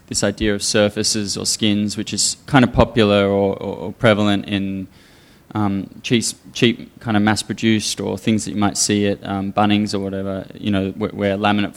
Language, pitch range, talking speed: English, 100-110 Hz, 200 wpm